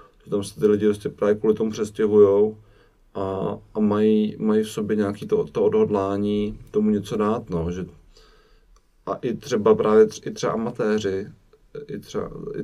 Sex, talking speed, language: male, 150 wpm, Czech